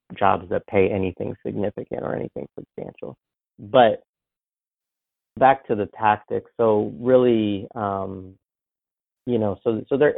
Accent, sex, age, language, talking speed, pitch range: American, male, 30-49, English, 125 wpm, 95-110 Hz